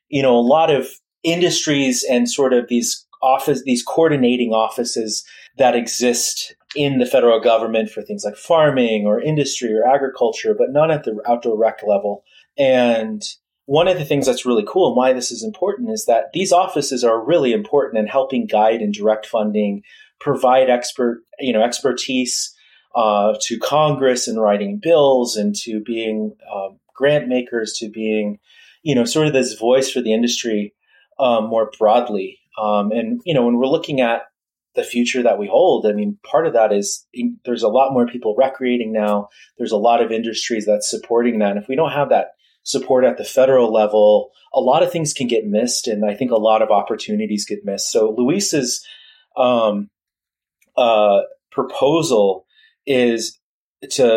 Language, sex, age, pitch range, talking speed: English, male, 30-49, 110-140 Hz, 175 wpm